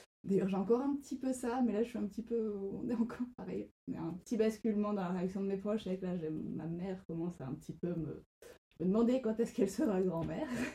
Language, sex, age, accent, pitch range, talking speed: French, female, 20-39, French, 170-215 Hz, 260 wpm